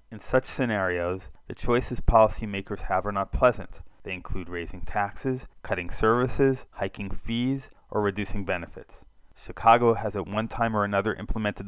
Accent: American